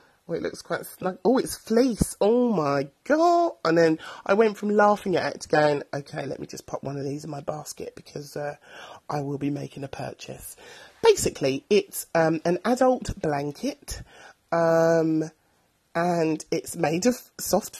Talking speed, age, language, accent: 175 wpm, 30-49, English, British